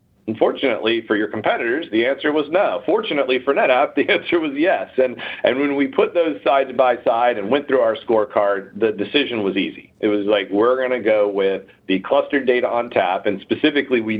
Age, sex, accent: 40-59, male, American